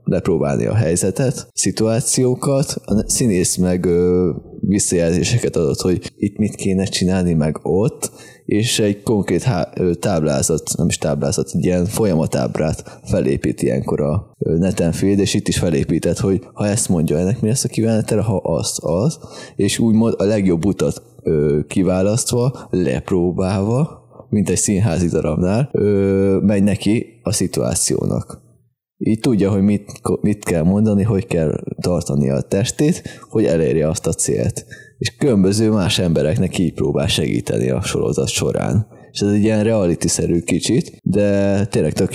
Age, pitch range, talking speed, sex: 20-39, 90-110 Hz, 145 wpm, male